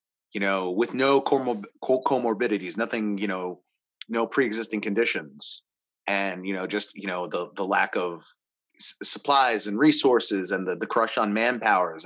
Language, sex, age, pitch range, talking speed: English, male, 30-49, 105-145 Hz, 160 wpm